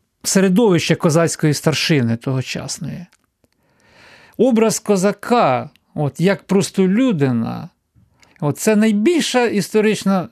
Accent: native